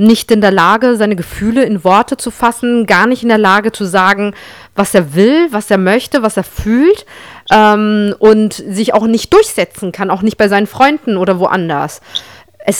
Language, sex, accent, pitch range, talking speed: German, female, German, 200-235 Hz, 190 wpm